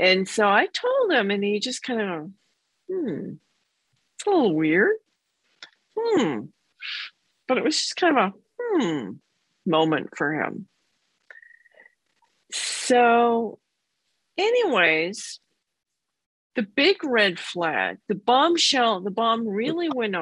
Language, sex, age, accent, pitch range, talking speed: English, female, 50-69, American, 170-265 Hz, 115 wpm